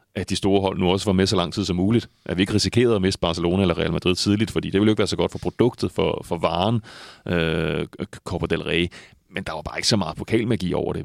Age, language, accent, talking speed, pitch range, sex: 30-49, Danish, native, 275 wpm, 85-105 Hz, male